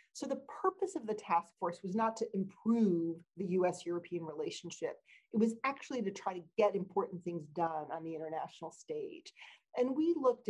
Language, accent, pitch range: English, American, 175-245 Hz